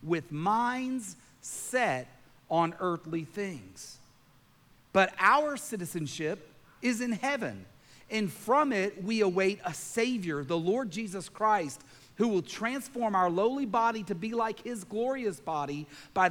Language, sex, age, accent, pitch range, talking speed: English, male, 40-59, American, 165-235 Hz, 130 wpm